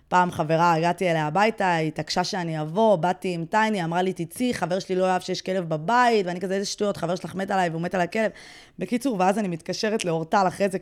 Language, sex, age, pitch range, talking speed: Hebrew, female, 20-39, 170-210 Hz, 220 wpm